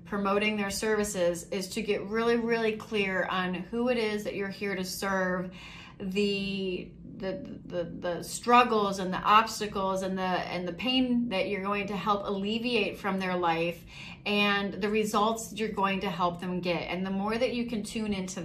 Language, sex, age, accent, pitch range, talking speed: English, female, 30-49, American, 185-215 Hz, 185 wpm